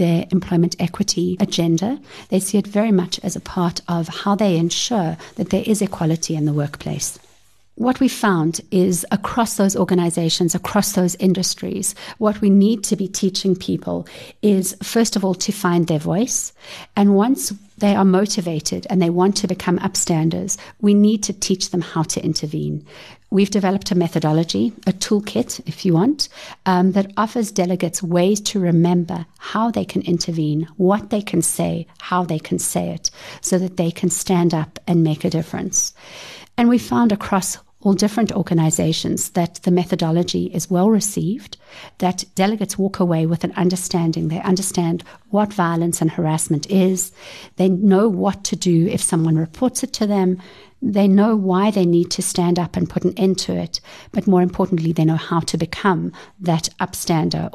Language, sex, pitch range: English, female, 170-200 Hz